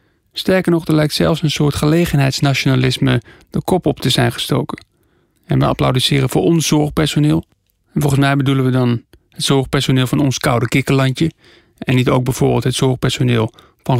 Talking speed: 165 wpm